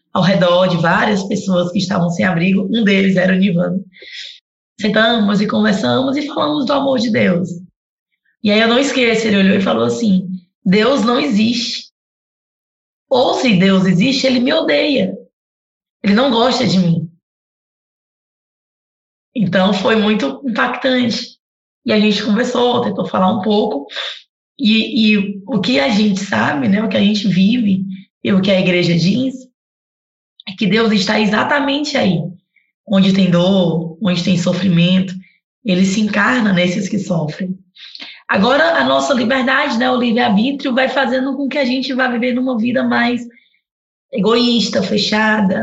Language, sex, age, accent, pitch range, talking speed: Portuguese, female, 20-39, Brazilian, 185-235 Hz, 155 wpm